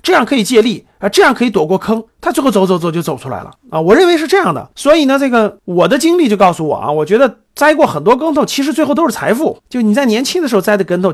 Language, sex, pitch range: Chinese, male, 190-275 Hz